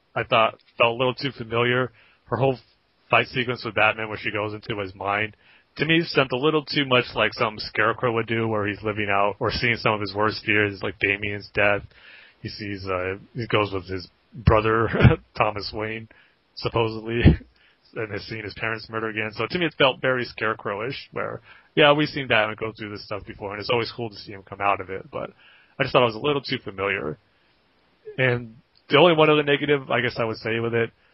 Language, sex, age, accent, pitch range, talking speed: English, male, 30-49, American, 100-115 Hz, 220 wpm